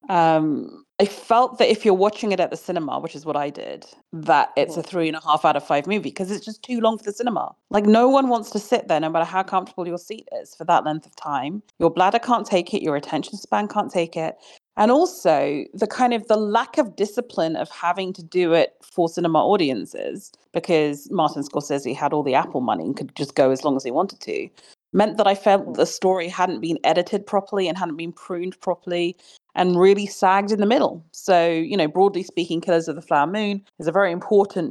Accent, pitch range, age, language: British, 155-200 Hz, 30-49, English